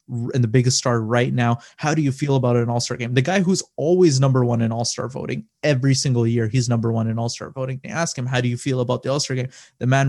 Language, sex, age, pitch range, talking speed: English, male, 20-39, 125-145 Hz, 270 wpm